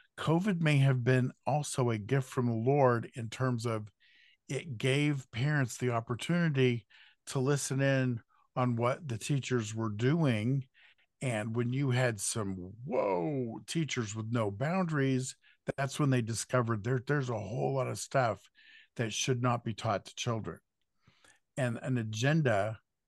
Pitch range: 115-135 Hz